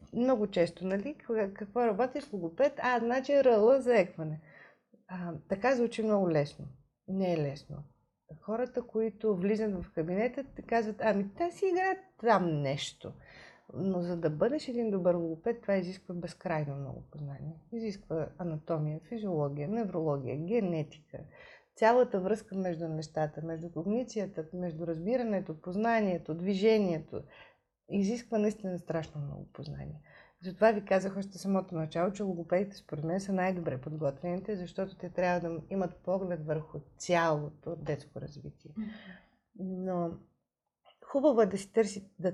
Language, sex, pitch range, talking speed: Bulgarian, female, 160-215 Hz, 130 wpm